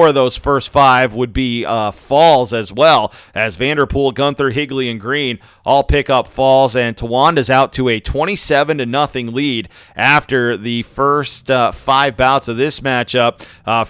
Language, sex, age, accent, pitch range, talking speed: English, male, 40-59, American, 120-145 Hz, 170 wpm